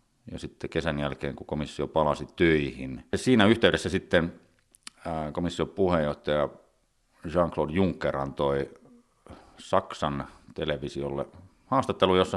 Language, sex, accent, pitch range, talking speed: Finnish, male, native, 75-90 Hz, 100 wpm